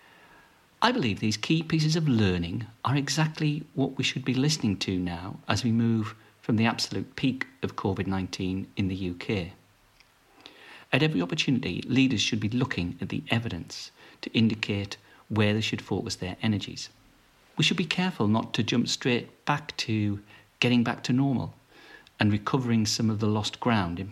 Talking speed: 170 wpm